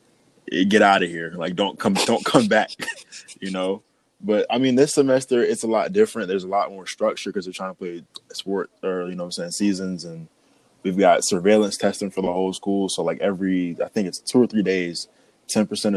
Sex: male